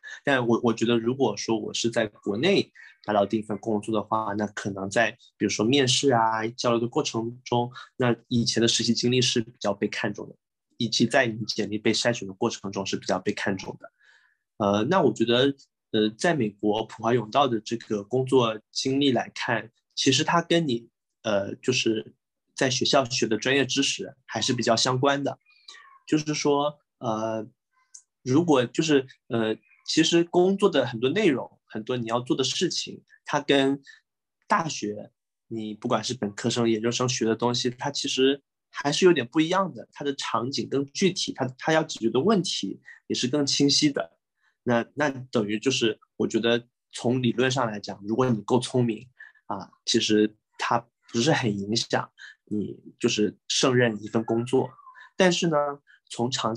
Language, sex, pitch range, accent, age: Chinese, male, 110-140 Hz, native, 20-39